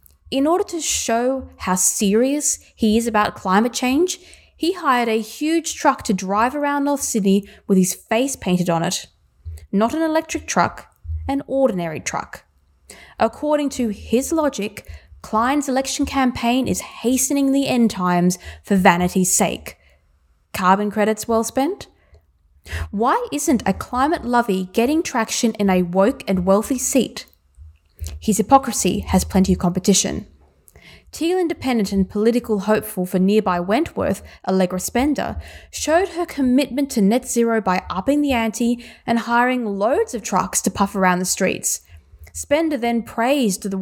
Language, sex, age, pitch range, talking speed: English, female, 10-29, 185-265 Hz, 145 wpm